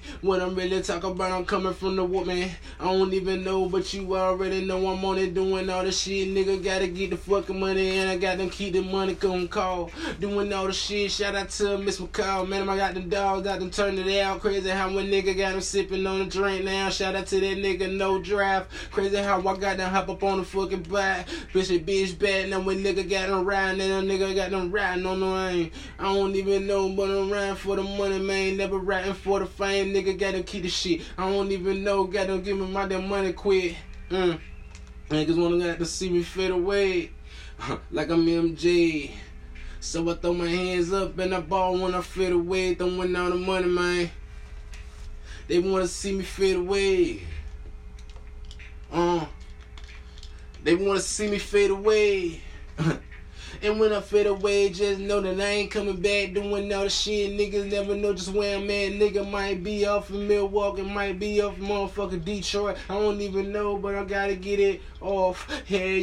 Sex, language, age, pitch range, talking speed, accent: male, English, 20-39, 185-200 Hz, 215 wpm, American